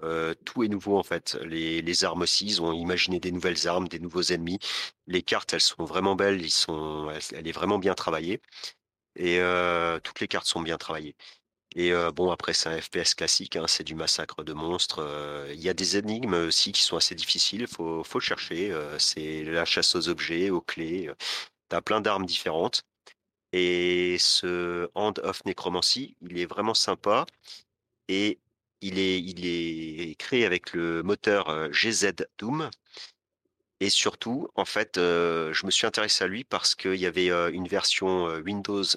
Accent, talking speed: French, 180 wpm